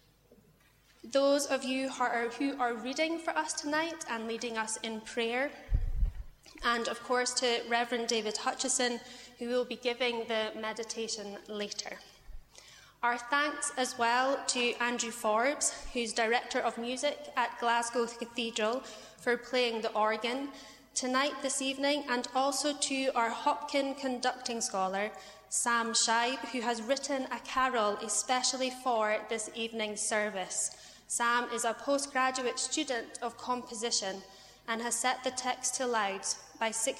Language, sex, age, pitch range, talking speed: English, female, 10-29, 220-255 Hz, 135 wpm